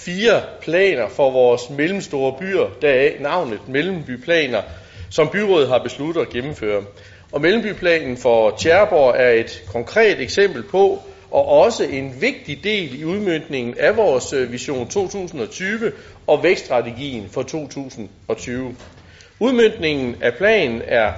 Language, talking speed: Danish, 125 wpm